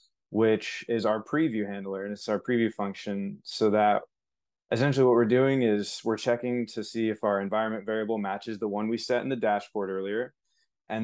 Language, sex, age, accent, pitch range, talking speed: English, male, 20-39, American, 105-120 Hz, 190 wpm